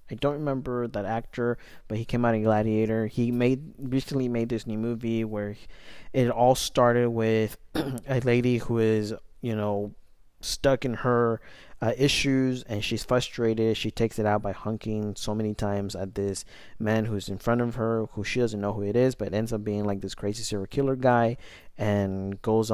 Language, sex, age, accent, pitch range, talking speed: English, male, 20-39, American, 105-125 Hz, 195 wpm